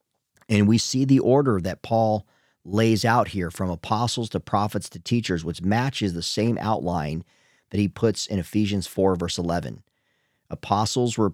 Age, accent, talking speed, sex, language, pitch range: 40-59, American, 165 wpm, male, English, 90-115 Hz